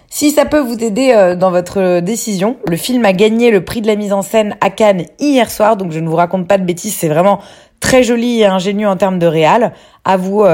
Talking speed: 245 wpm